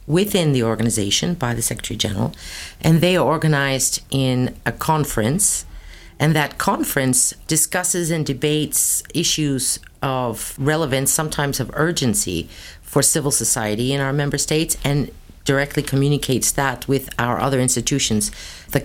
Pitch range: 120-155 Hz